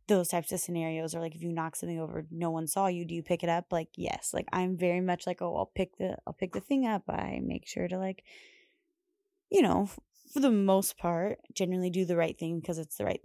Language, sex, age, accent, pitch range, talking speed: English, female, 20-39, American, 165-195 Hz, 255 wpm